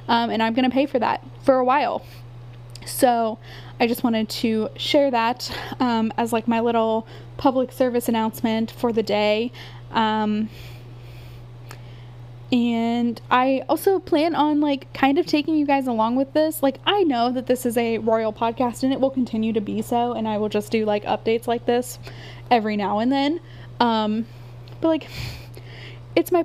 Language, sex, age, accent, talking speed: English, female, 10-29, American, 175 wpm